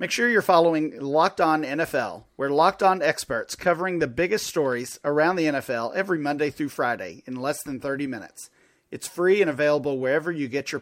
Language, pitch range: English, 140-175 Hz